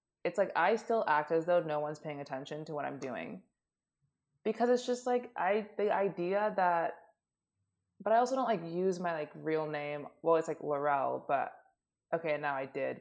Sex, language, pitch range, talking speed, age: female, English, 150-190 Hz, 195 wpm, 20-39